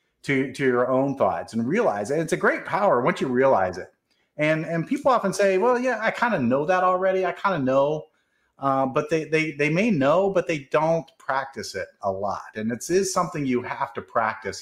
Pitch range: 110-150 Hz